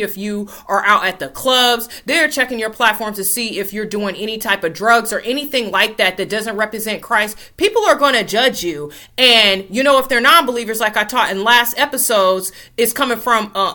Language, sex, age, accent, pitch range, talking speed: English, female, 30-49, American, 195-235 Hz, 220 wpm